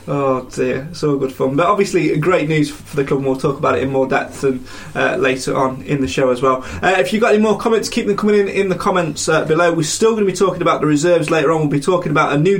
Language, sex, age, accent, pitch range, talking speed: English, male, 20-39, British, 135-180 Hz, 300 wpm